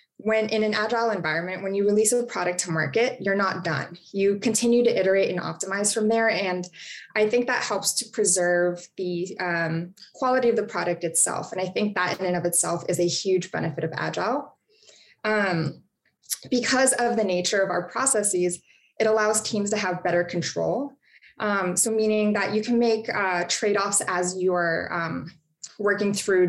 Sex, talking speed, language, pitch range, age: female, 180 wpm, English, 180-220 Hz, 20-39